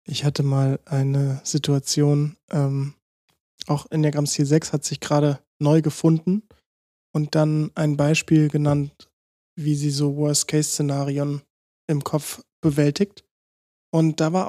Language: German